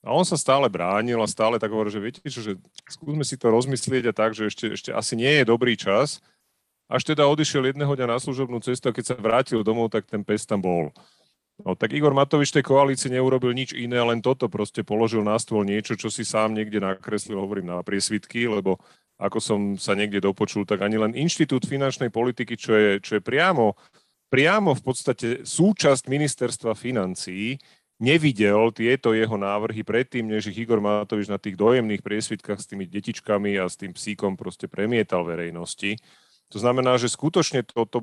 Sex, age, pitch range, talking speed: male, 40-59, 105-125 Hz, 190 wpm